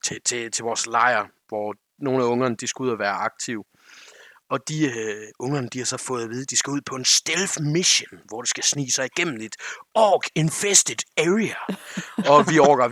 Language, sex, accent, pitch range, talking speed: Danish, male, native, 125-185 Hz, 210 wpm